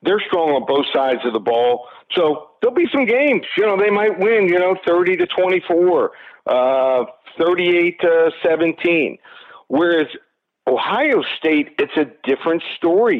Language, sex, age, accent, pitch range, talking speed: English, male, 50-69, American, 130-185 Hz, 155 wpm